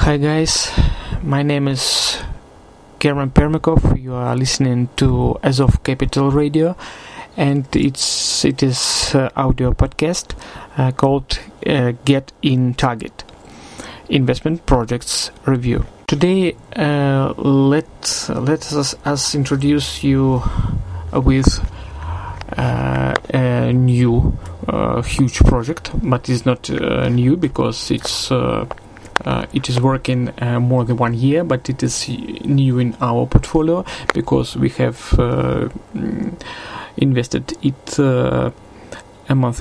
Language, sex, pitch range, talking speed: Russian, male, 125-145 Hz, 120 wpm